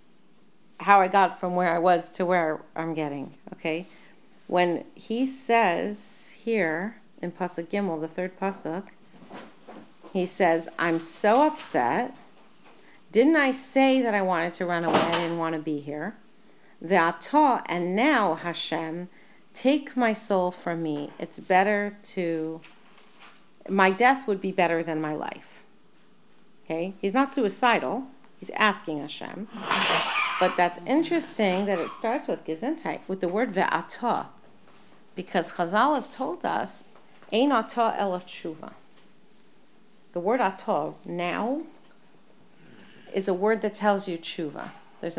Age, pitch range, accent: 40-59, 170-220 Hz, American